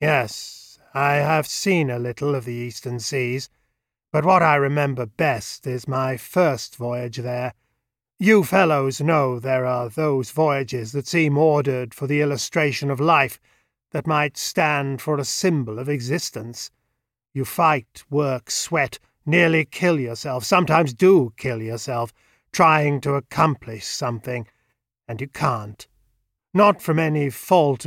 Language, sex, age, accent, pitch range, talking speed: English, male, 40-59, British, 125-160 Hz, 140 wpm